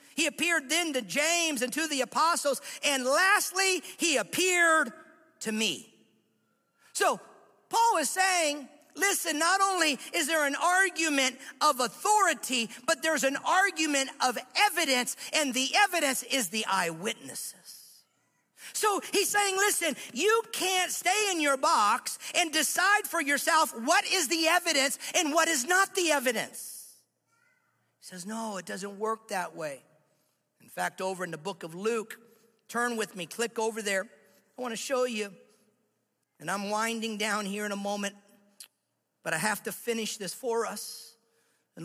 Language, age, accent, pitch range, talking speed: English, 50-69, American, 235-325 Hz, 150 wpm